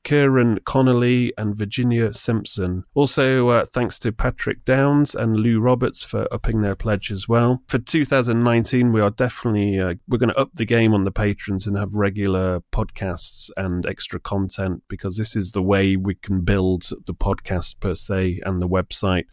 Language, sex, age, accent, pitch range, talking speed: English, male, 30-49, British, 95-115 Hz, 175 wpm